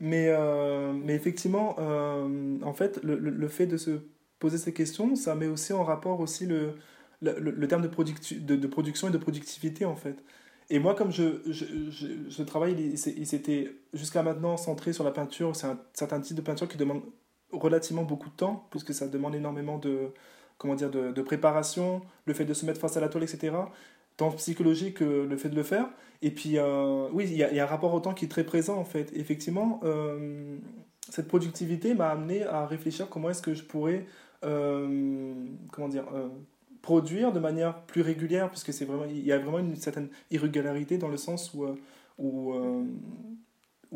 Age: 20-39